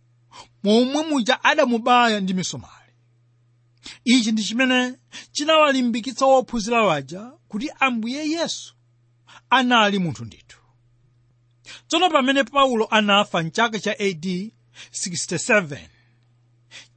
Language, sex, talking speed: English, male, 90 wpm